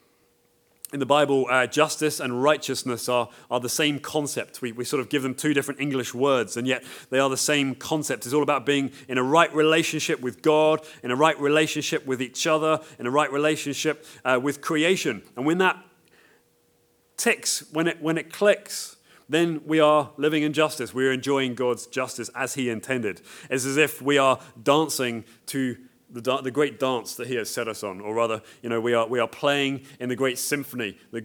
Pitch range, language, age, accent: 115-145 Hz, English, 30-49, British